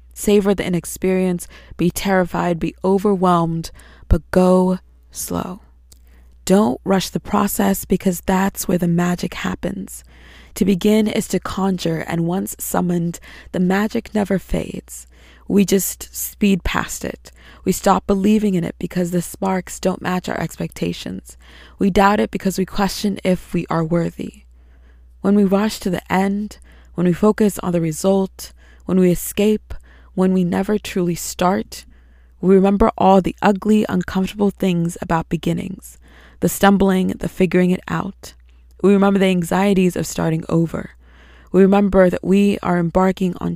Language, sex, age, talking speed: English, female, 20-39, 150 wpm